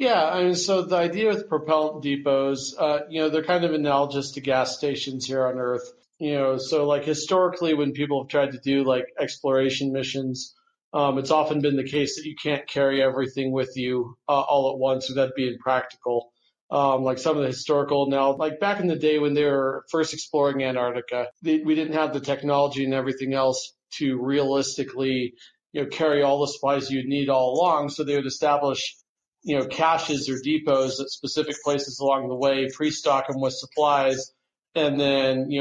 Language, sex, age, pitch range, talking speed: English, male, 40-59, 130-150 Hz, 195 wpm